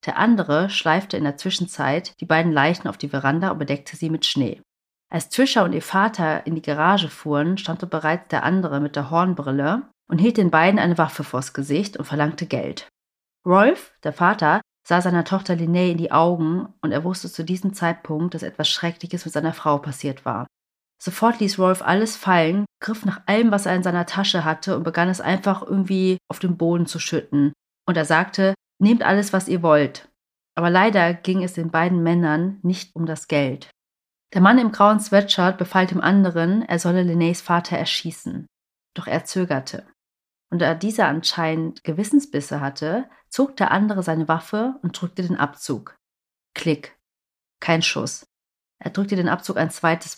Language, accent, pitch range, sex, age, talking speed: German, German, 150-185 Hz, female, 30-49, 180 wpm